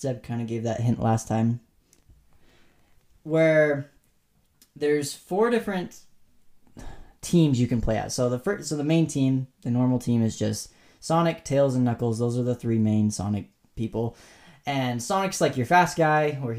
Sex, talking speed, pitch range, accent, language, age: male, 170 wpm, 115-155 Hz, American, English, 10-29